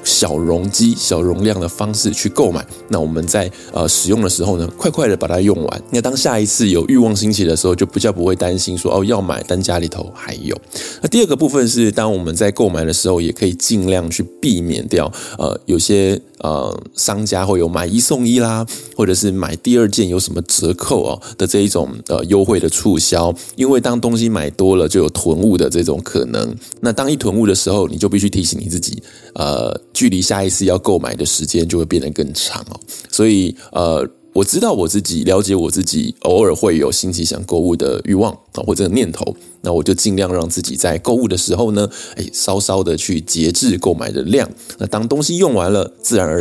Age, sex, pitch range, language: 20-39, male, 90-110 Hz, Chinese